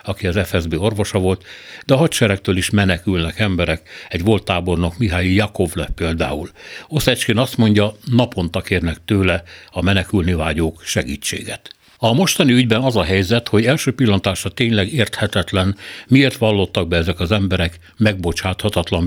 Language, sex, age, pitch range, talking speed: Hungarian, male, 60-79, 90-110 Hz, 140 wpm